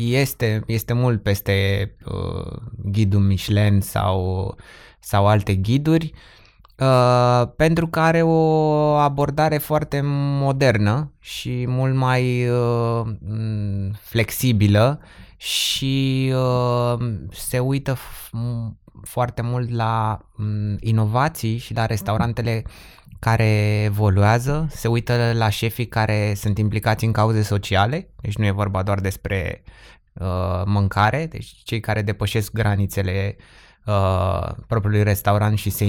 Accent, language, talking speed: native, Romanian, 100 wpm